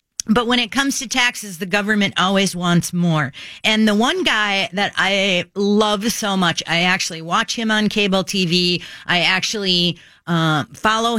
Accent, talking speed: American, 165 wpm